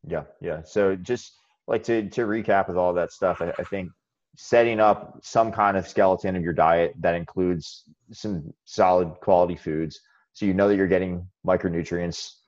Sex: male